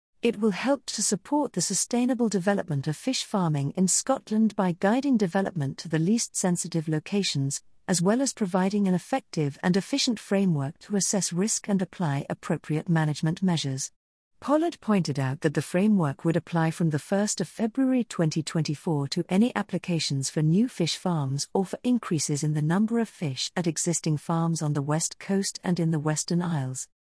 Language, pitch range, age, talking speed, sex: English, 155-215 Hz, 50-69, 170 wpm, female